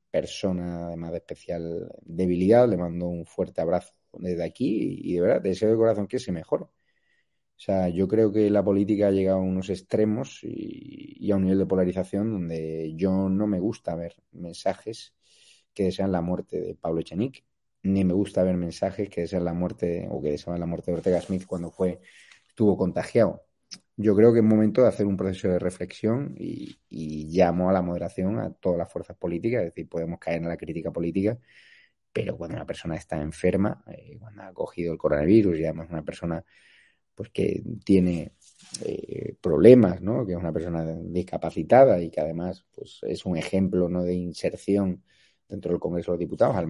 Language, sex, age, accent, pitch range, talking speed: Spanish, male, 30-49, Spanish, 85-95 Hz, 190 wpm